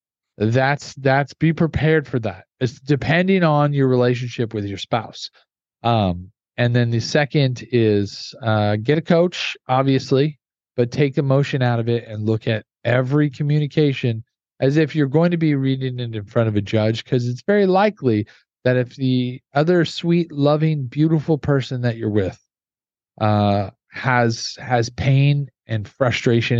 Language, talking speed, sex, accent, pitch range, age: English, 160 wpm, male, American, 115-150 Hz, 40-59